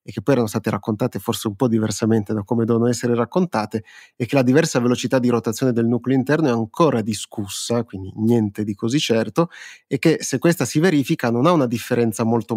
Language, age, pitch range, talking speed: Italian, 30-49, 115-130 Hz, 210 wpm